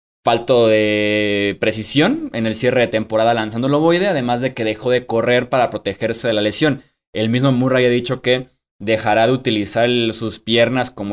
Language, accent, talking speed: Spanish, Mexican, 180 wpm